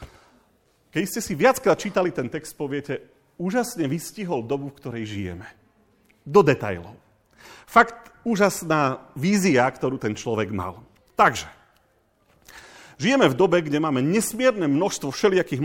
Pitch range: 130-190 Hz